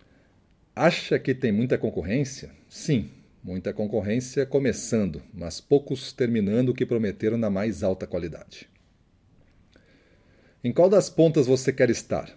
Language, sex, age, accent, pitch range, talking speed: Portuguese, male, 40-59, Brazilian, 105-150 Hz, 125 wpm